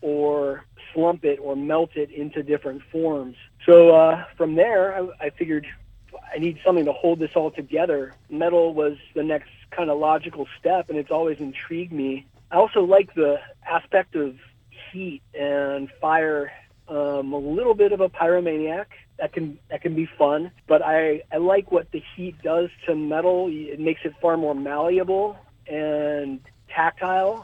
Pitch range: 145-170 Hz